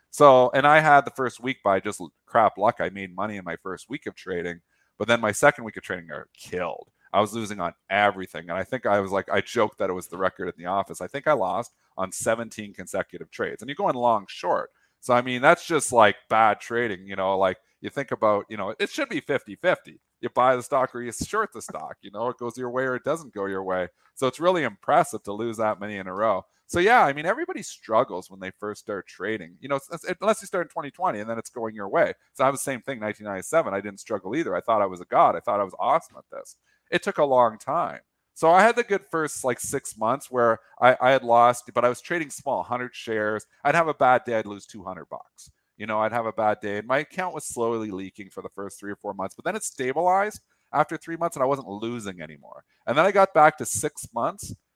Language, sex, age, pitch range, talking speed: English, male, 40-59, 100-135 Hz, 260 wpm